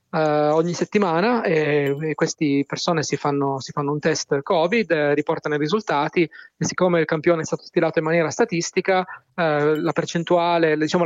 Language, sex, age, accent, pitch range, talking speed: Italian, male, 20-39, native, 145-175 Hz, 180 wpm